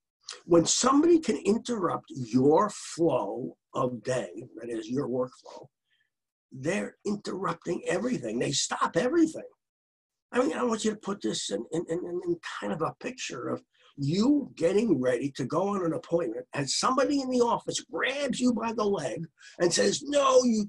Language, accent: English, American